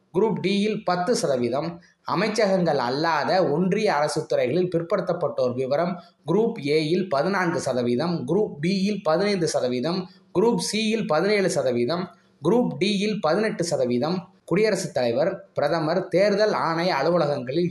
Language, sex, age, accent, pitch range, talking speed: Tamil, male, 20-39, native, 155-190 Hz, 115 wpm